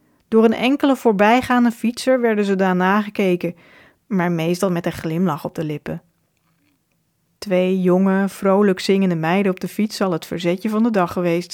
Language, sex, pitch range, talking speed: Dutch, female, 175-215 Hz, 165 wpm